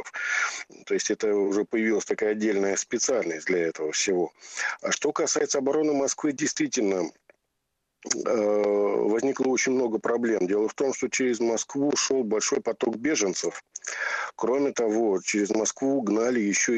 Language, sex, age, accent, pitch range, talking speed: Russian, male, 50-69, native, 100-120 Hz, 135 wpm